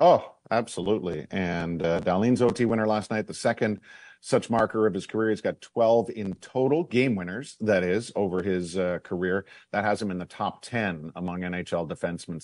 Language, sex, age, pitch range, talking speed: English, male, 50-69, 90-110 Hz, 190 wpm